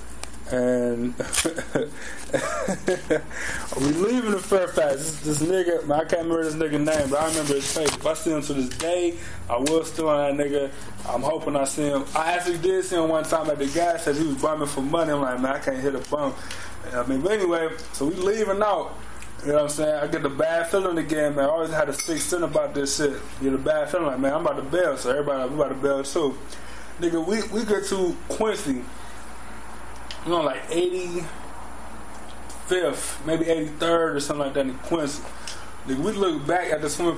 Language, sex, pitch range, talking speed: English, male, 140-170 Hz, 220 wpm